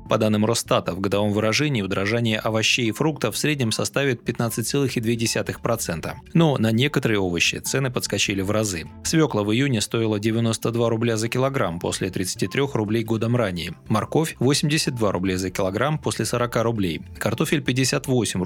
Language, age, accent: Russian, 20-39, native